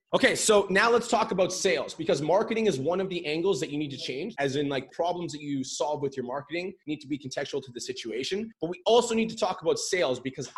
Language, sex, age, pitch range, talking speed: English, male, 20-39, 140-185 Hz, 255 wpm